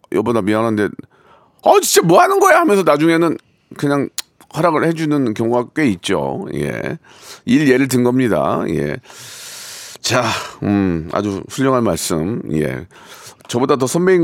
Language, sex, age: Korean, male, 40-59